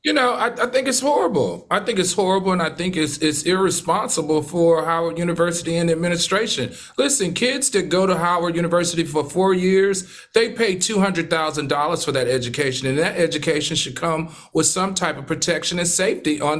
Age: 40-59